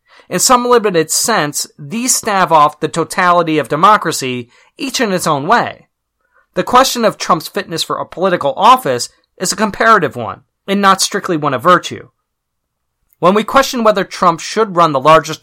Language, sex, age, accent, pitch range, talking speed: English, male, 30-49, American, 150-200 Hz, 170 wpm